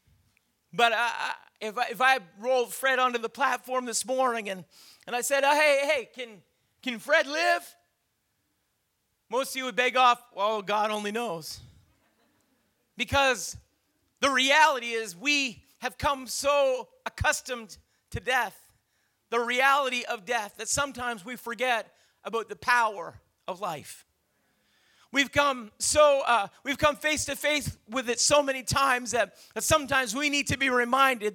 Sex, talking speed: male, 145 wpm